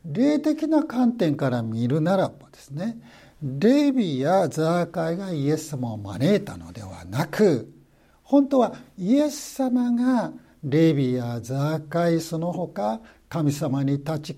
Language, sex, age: Japanese, male, 60-79